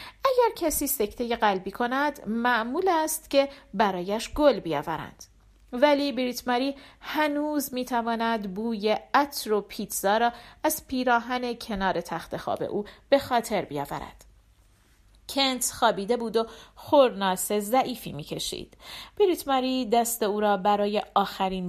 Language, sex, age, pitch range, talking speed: Persian, female, 40-59, 190-265 Hz, 120 wpm